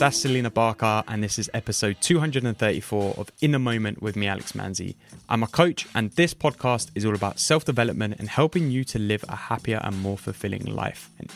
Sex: male